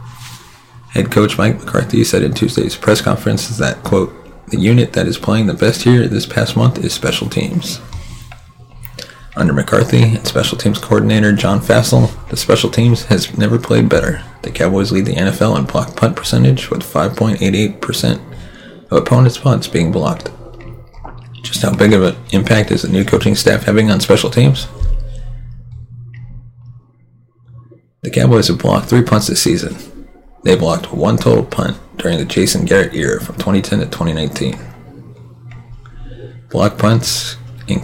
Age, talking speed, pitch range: 30-49, 150 wpm, 100-120 Hz